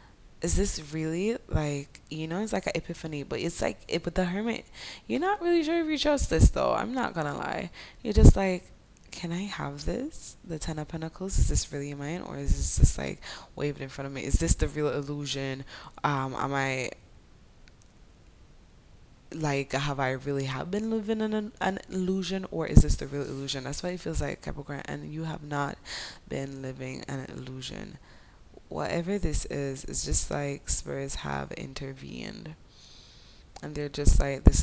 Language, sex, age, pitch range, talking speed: English, female, 10-29, 130-165 Hz, 185 wpm